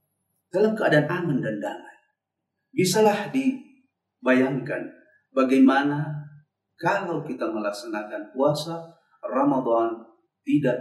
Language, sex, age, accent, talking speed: Indonesian, male, 40-59, native, 80 wpm